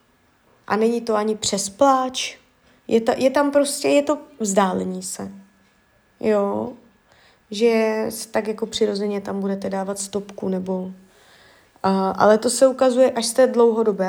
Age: 20-39